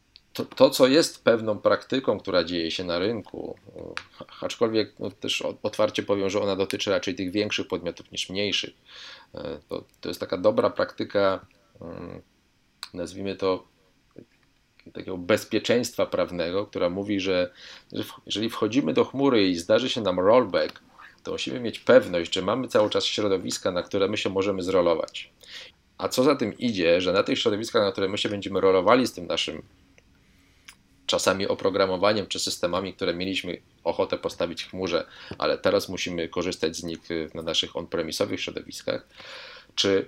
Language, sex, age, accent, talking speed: Polish, male, 40-59, native, 150 wpm